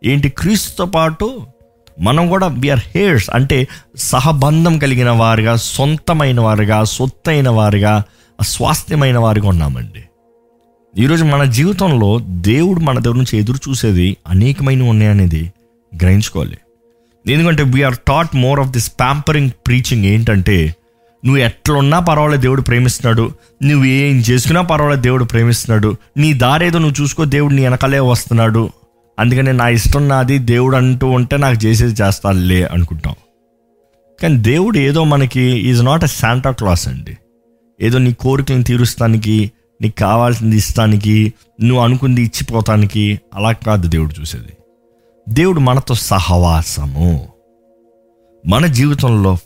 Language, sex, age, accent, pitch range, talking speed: Telugu, male, 20-39, native, 110-140 Hz, 120 wpm